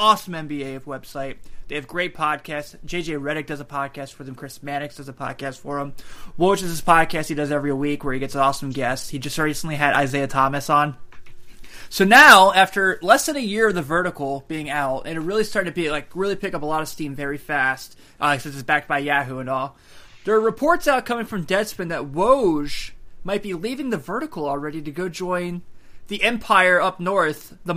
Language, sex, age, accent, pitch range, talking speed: English, male, 20-39, American, 140-190 Hz, 215 wpm